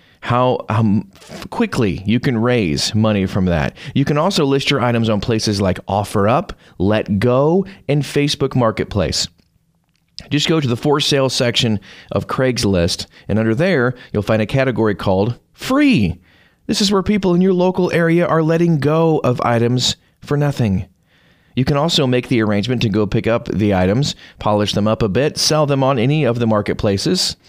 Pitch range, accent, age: 105-155 Hz, American, 30-49